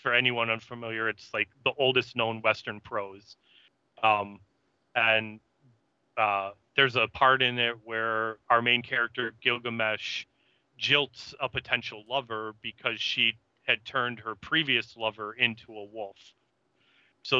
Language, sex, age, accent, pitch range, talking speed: English, male, 30-49, American, 110-120 Hz, 130 wpm